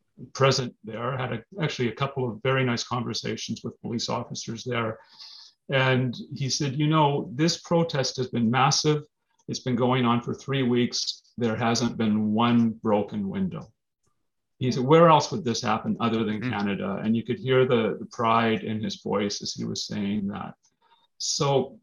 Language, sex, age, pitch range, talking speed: English, male, 40-59, 105-130 Hz, 175 wpm